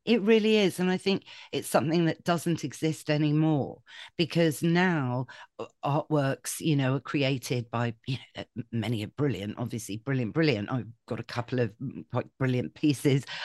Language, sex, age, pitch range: English, female, 40-59, 135-170 Hz